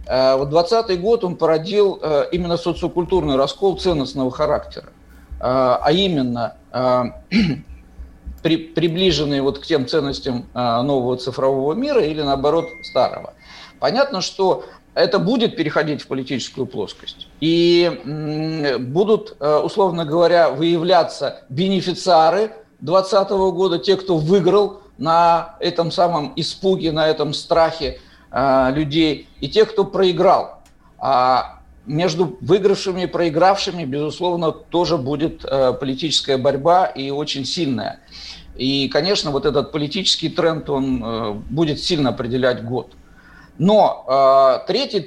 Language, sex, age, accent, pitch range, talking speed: Russian, male, 50-69, native, 135-180 Hz, 110 wpm